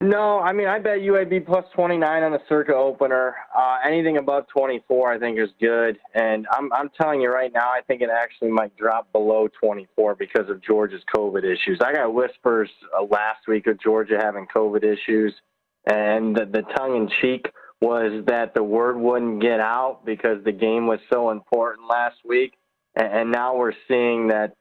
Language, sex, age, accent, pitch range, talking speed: English, male, 20-39, American, 110-135 Hz, 190 wpm